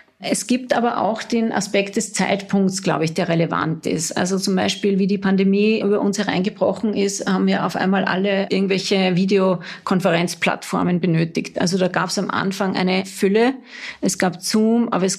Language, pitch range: German, 195-225 Hz